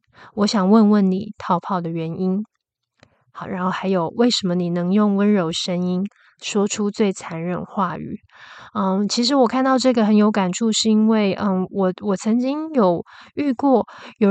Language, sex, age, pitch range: Chinese, female, 20-39, 185-230 Hz